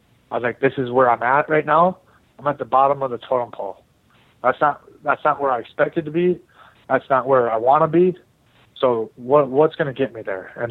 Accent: American